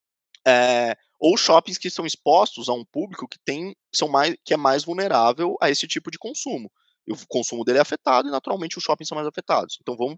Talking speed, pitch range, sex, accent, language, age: 210 wpm, 125-190 Hz, male, Brazilian, Portuguese, 20-39